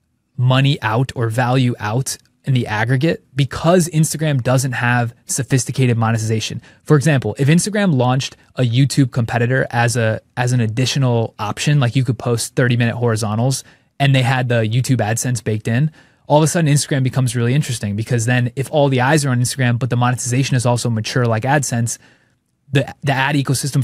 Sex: male